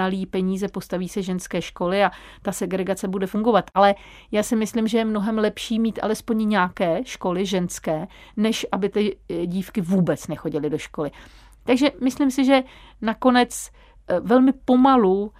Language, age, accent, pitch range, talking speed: Czech, 40-59, native, 180-215 Hz, 150 wpm